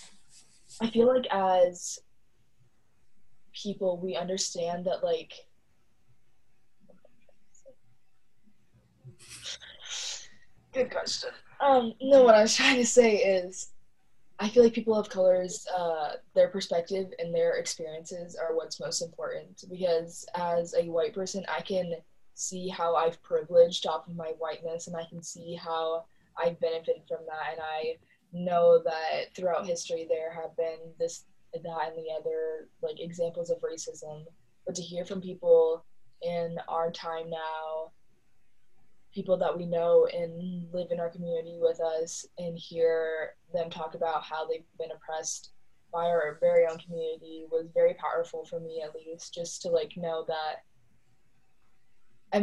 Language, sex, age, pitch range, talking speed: English, female, 20-39, 165-265 Hz, 145 wpm